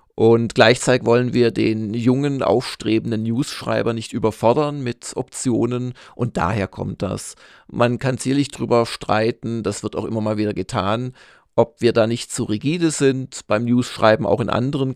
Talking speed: 160 wpm